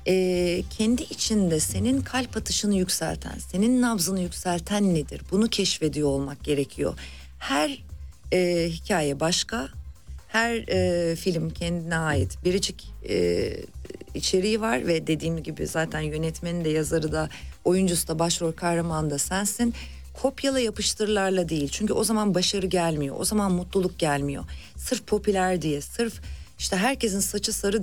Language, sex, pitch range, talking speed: Turkish, female, 155-200 Hz, 135 wpm